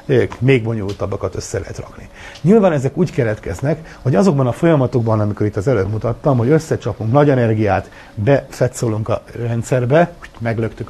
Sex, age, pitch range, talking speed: male, 60-79, 105-145 Hz, 145 wpm